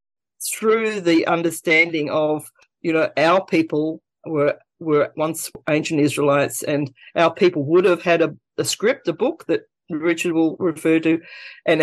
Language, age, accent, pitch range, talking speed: English, 40-59, Australian, 150-175 Hz, 150 wpm